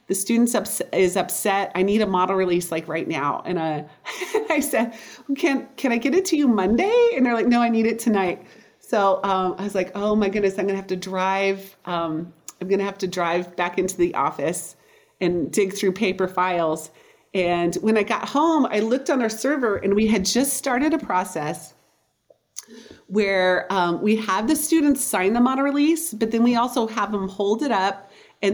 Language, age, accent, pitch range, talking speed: English, 40-59, American, 185-235 Hz, 210 wpm